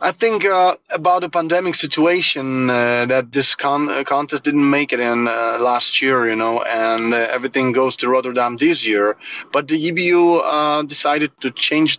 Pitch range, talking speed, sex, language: 120-140 Hz, 175 wpm, male, English